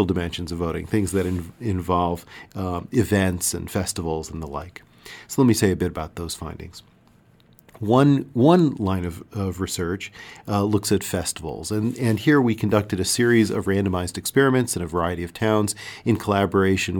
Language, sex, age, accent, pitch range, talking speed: English, male, 40-59, American, 95-110 Hz, 175 wpm